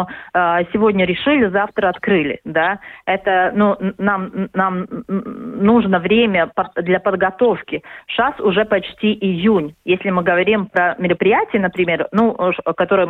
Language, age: Russian, 20-39